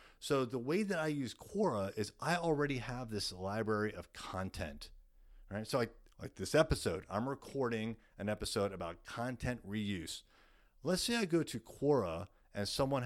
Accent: American